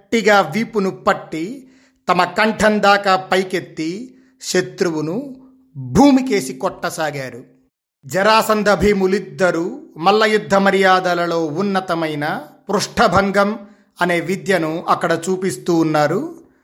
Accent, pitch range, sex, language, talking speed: native, 175-215 Hz, male, Telugu, 80 wpm